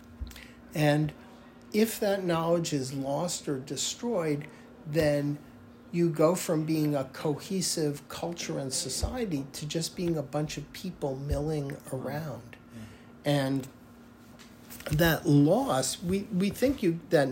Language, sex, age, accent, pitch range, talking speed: English, male, 60-79, American, 130-165 Hz, 120 wpm